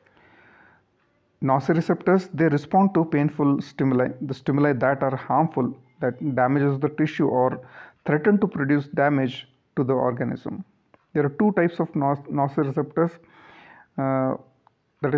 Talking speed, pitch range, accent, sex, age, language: 125 wpm, 130-155 Hz, Indian, male, 40-59, English